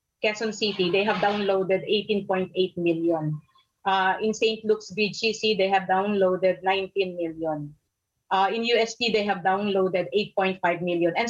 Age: 30-49